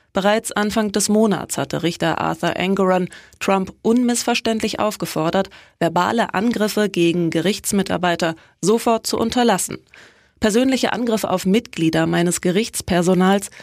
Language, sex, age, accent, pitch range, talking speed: German, female, 20-39, German, 175-215 Hz, 105 wpm